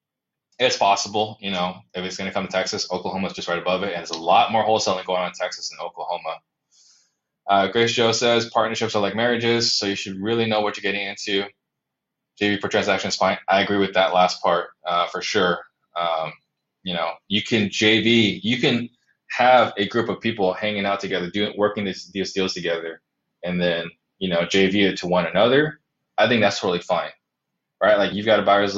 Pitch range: 95-110 Hz